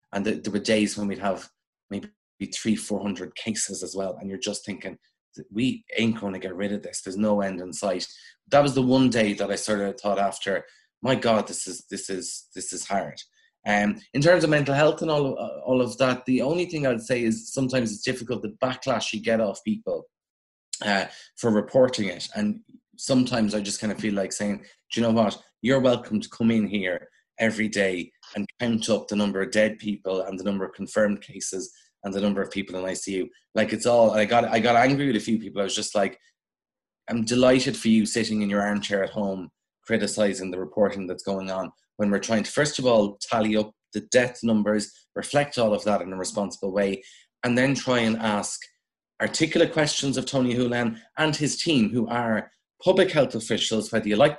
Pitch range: 100-130 Hz